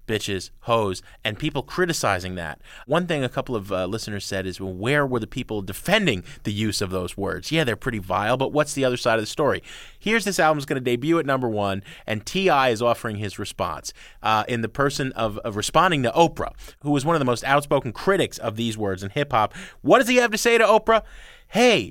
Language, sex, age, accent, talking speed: English, male, 30-49, American, 235 wpm